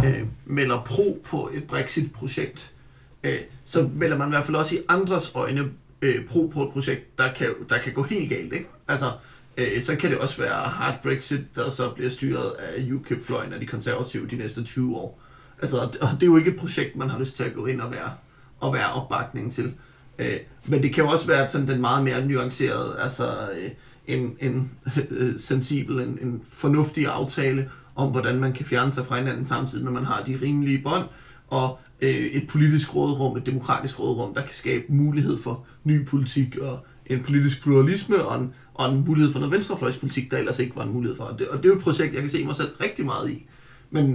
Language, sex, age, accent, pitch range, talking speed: Danish, male, 30-49, native, 130-145 Hz, 210 wpm